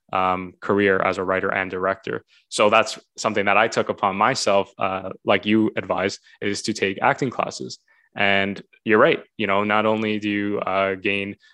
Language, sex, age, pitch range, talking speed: English, male, 20-39, 100-110 Hz, 180 wpm